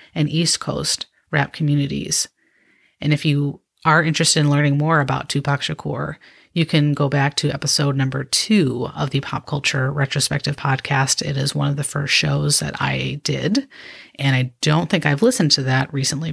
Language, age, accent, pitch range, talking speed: English, 30-49, American, 140-175 Hz, 180 wpm